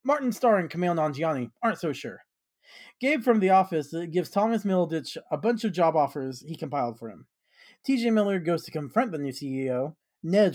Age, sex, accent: 40-59, male, American